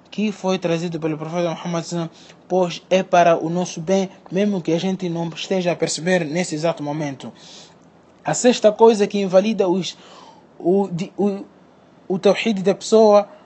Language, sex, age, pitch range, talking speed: Portuguese, male, 20-39, 170-205 Hz, 155 wpm